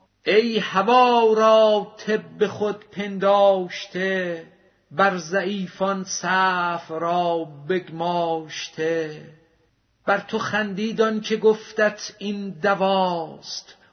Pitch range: 190-225 Hz